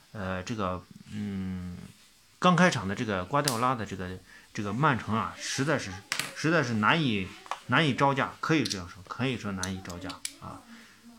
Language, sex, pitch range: Chinese, male, 100-145 Hz